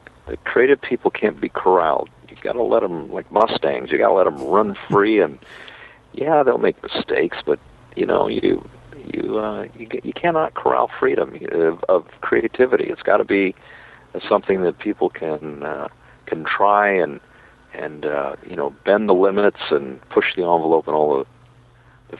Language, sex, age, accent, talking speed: English, male, 50-69, American, 175 wpm